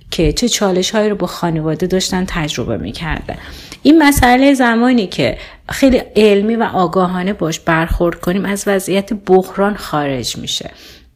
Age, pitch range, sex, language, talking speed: 30-49, 150-195 Hz, female, Persian, 140 wpm